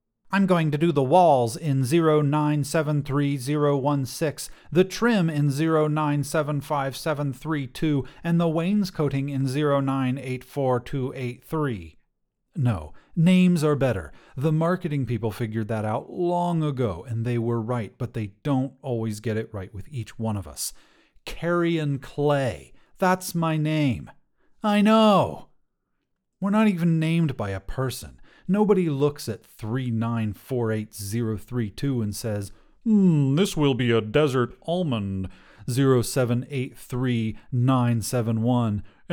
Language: English